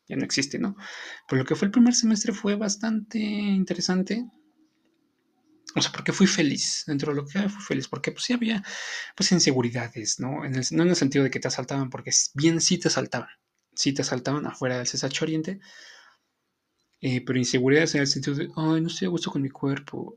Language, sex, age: Korean, male, 20-39